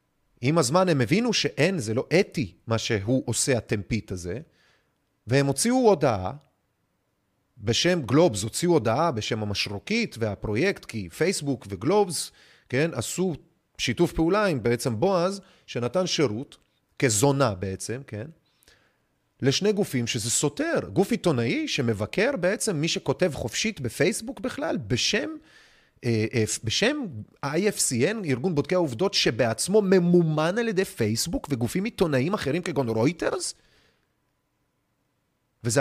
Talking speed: 115 wpm